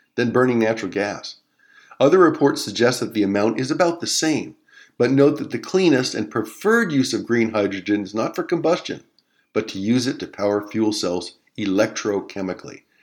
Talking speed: 175 wpm